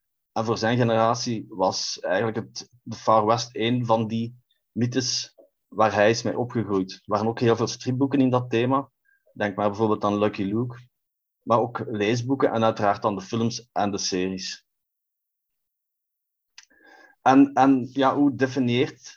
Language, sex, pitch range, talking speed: Dutch, male, 110-125 Hz, 150 wpm